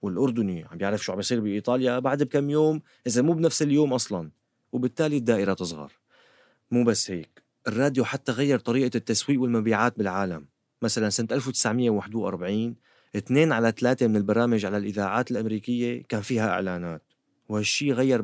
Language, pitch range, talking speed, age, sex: Arabic, 100-125 Hz, 145 wpm, 30-49, male